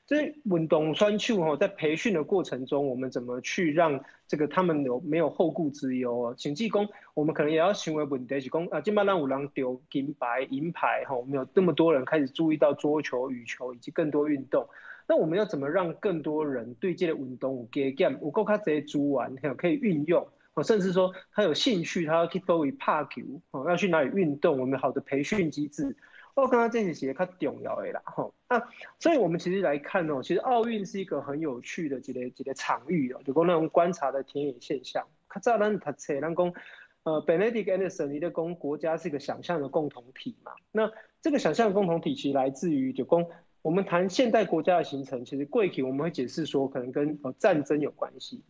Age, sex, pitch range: 20-39, male, 140-195 Hz